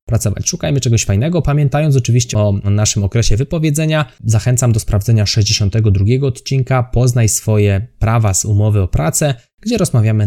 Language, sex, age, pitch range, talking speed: Polish, male, 20-39, 100-125 Hz, 140 wpm